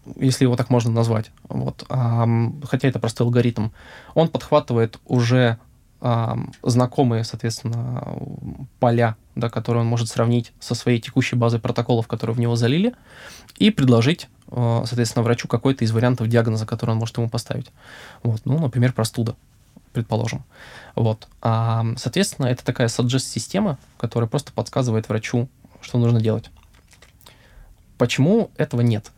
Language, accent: Russian, native